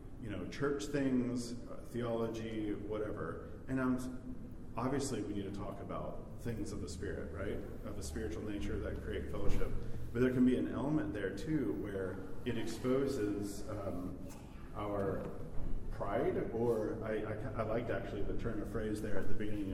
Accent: American